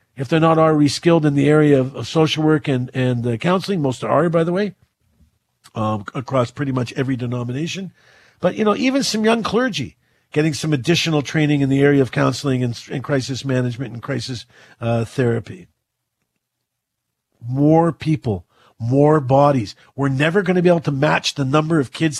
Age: 50-69